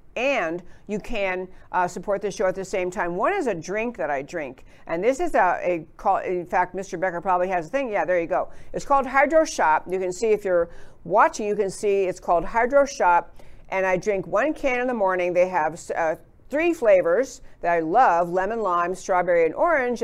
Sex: female